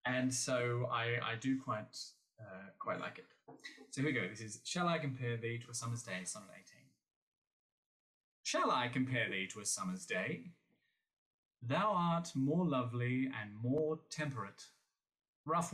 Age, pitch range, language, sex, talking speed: 30-49, 120-155 Hz, English, male, 160 wpm